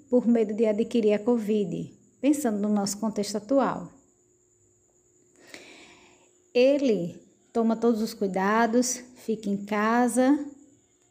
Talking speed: 105 wpm